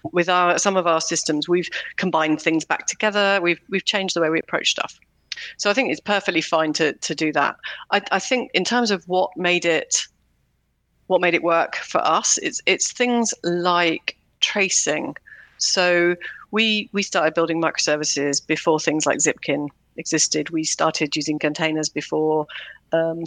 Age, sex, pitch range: 40-59, female, 155-180 Hz